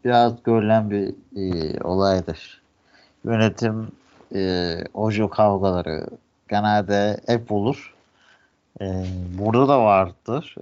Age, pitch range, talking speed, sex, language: 50-69, 95-115 Hz, 90 wpm, male, Turkish